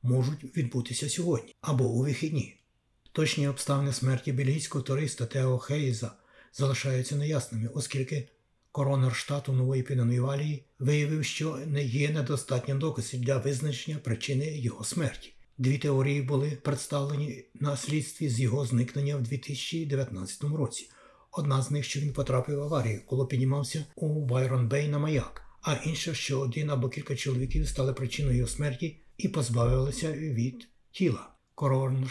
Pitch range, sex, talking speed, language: 130-150 Hz, male, 140 wpm, Ukrainian